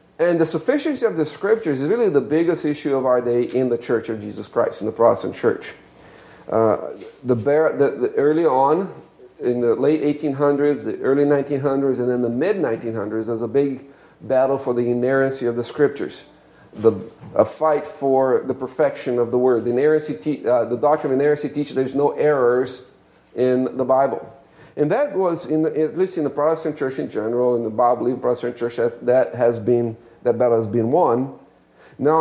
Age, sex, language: 50-69, male, English